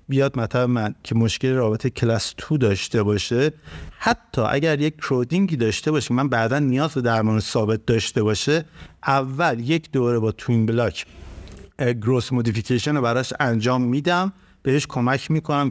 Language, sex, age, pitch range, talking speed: Persian, male, 50-69, 115-145 Hz, 145 wpm